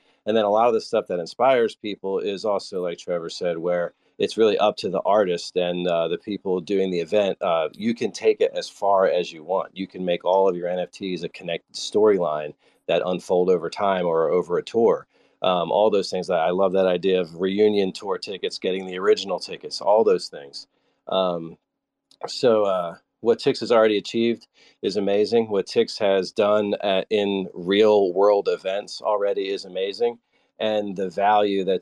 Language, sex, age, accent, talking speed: English, male, 40-59, American, 190 wpm